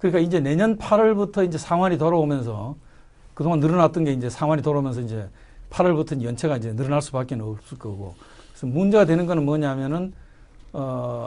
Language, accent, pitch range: Korean, native, 120-180 Hz